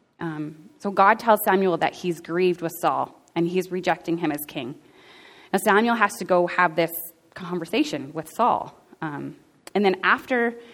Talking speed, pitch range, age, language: 170 wpm, 175-220 Hz, 20-39, English